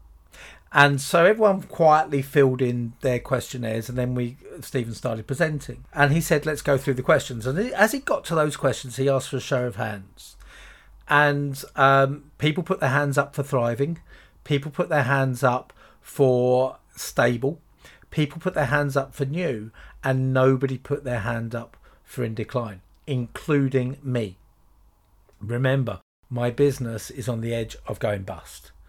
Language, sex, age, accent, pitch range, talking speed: English, male, 40-59, British, 120-145 Hz, 165 wpm